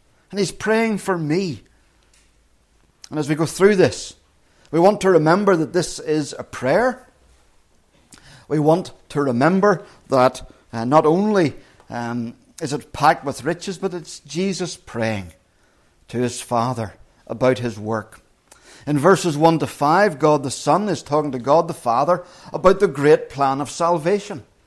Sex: male